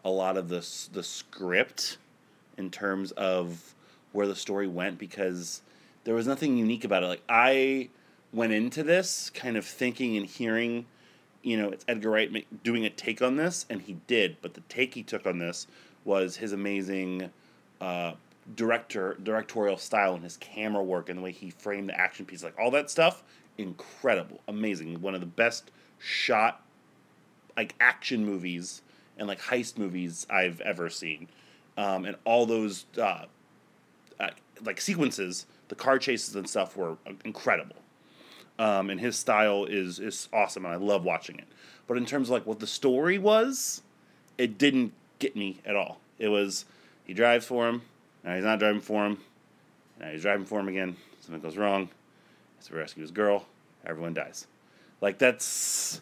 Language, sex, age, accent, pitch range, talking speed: English, male, 30-49, American, 95-115 Hz, 175 wpm